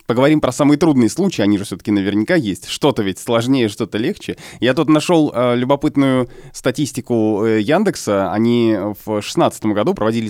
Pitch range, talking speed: 110-145 Hz, 155 wpm